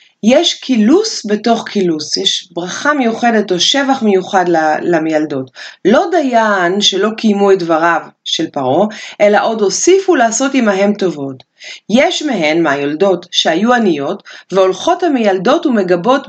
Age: 30-49